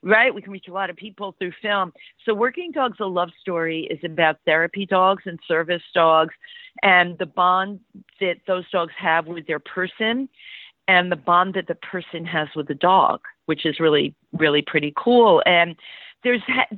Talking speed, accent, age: 180 wpm, American, 50-69